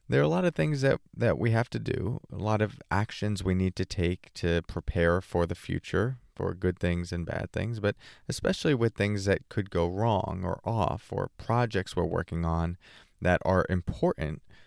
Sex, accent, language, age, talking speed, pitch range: male, American, English, 30-49, 200 wpm, 90-115 Hz